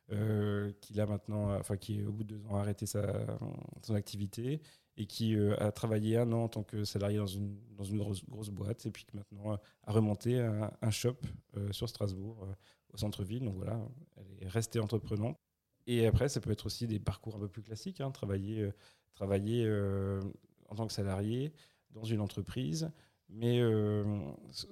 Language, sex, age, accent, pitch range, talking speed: French, male, 30-49, French, 105-120 Hz, 195 wpm